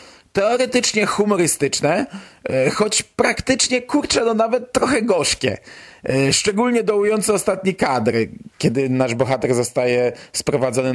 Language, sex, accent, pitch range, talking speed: Polish, male, native, 130-185 Hz, 100 wpm